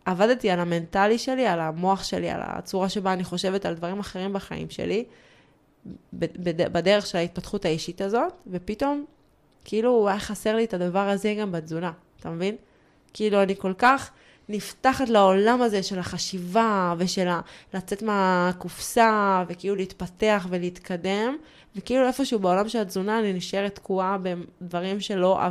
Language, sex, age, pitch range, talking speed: Hebrew, female, 20-39, 180-215 Hz, 145 wpm